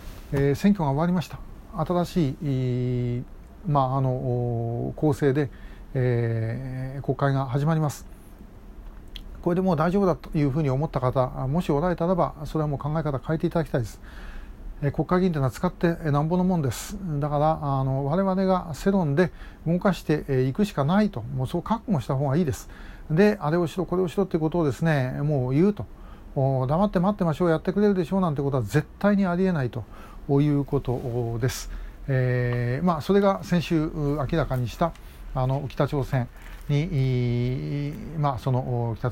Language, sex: Japanese, male